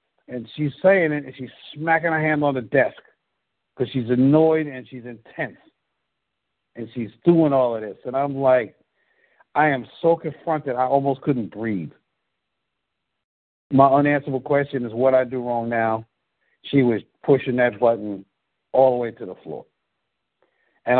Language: English